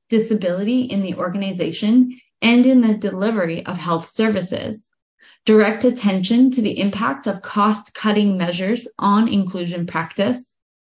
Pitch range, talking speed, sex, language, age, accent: 185-240 Hz, 125 wpm, female, English, 10-29, American